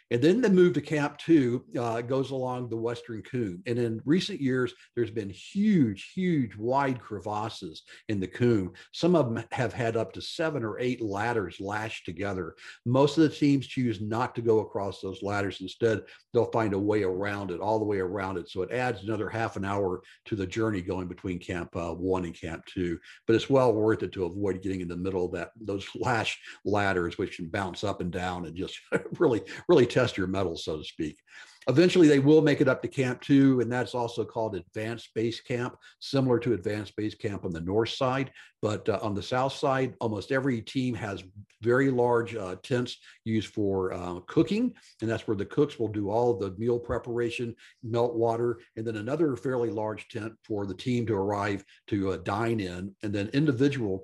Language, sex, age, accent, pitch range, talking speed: English, male, 50-69, American, 100-125 Hz, 210 wpm